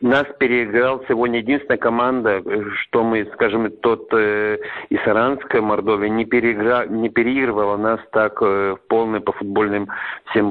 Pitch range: 100-120 Hz